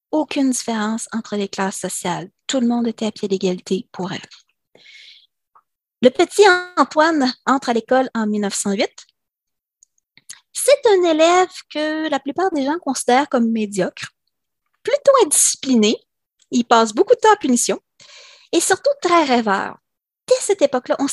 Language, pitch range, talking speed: French, 235-340 Hz, 145 wpm